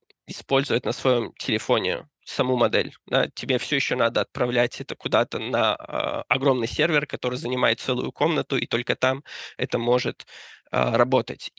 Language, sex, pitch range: Russian, male, 125-140 Hz